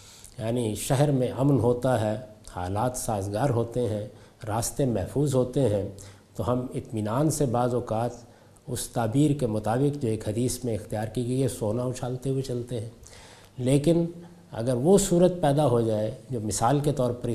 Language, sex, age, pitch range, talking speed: Urdu, male, 50-69, 105-135 Hz, 170 wpm